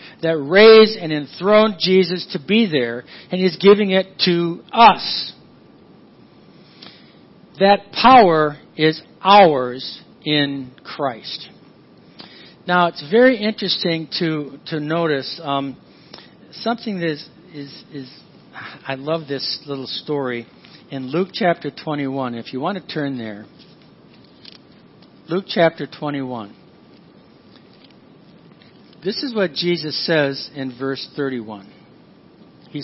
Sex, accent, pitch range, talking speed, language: male, American, 140-195 Hz, 110 wpm, English